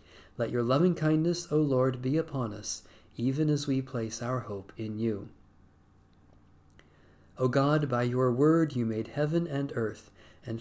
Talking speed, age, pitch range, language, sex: 160 wpm, 40-59, 100-145 Hz, English, male